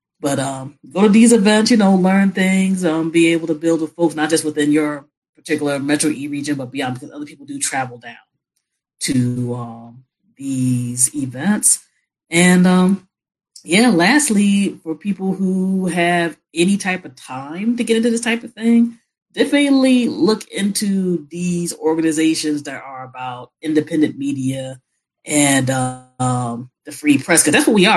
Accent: American